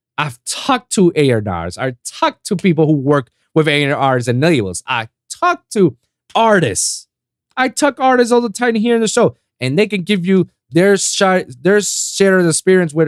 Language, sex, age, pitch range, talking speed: English, male, 30-49, 135-175 Hz, 185 wpm